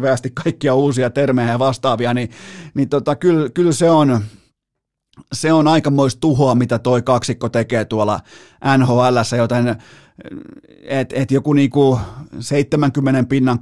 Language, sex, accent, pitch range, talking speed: Finnish, male, native, 125-155 Hz, 130 wpm